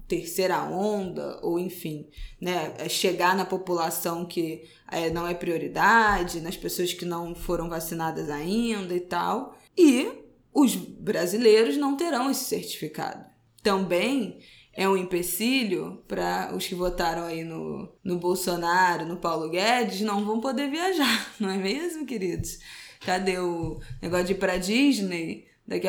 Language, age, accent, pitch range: Portuguese, 20-39, Brazilian, 175-235 Hz